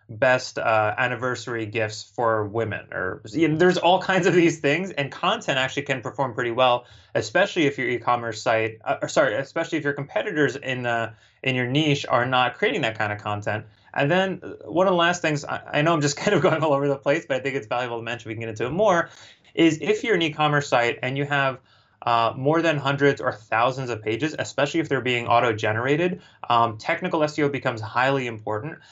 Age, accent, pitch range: 20-39, American, 115-145 Hz